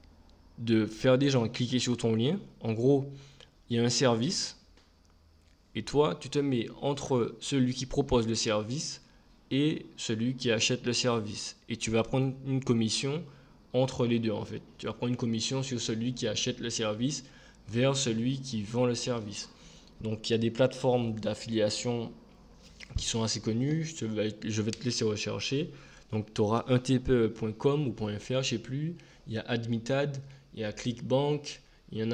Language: French